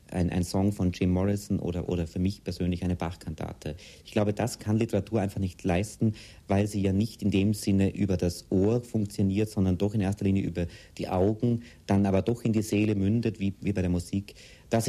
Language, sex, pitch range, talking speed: German, male, 90-100 Hz, 215 wpm